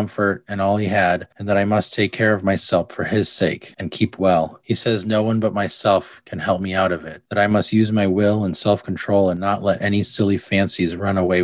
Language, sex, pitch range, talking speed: English, male, 95-110 Hz, 245 wpm